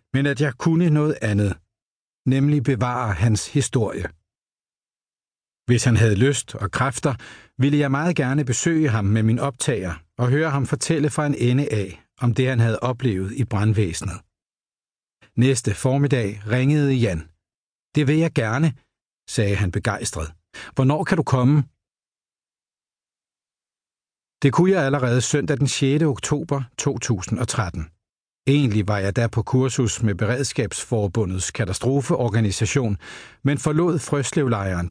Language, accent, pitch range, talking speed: Danish, native, 105-140 Hz, 130 wpm